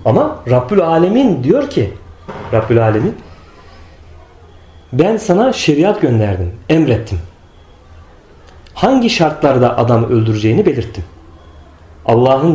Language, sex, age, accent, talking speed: Turkish, male, 40-59, native, 85 wpm